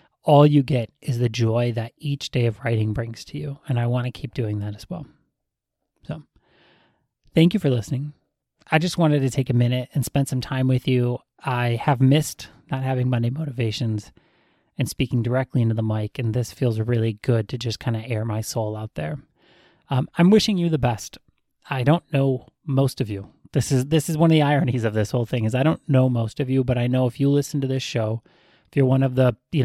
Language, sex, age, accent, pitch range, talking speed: English, male, 30-49, American, 115-140 Hz, 230 wpm